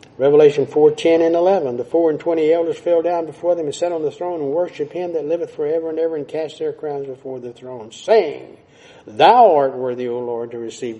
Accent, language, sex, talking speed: American, English, male, 230 wpm